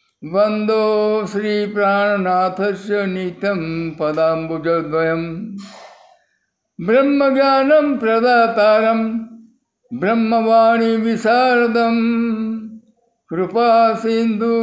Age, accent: 60-79, native